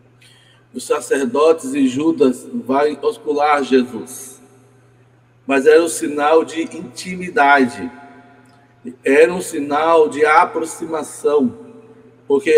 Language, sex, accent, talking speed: Portuguese, male, Brazilian, 90 wpm